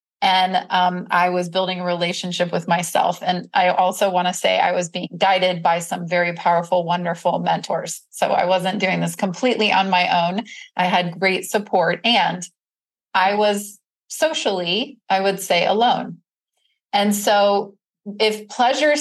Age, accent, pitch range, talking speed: 30-49, American, 180-215 Hz, 155 wpm